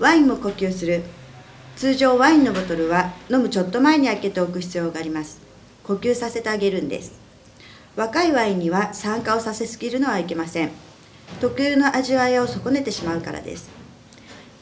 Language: Japanese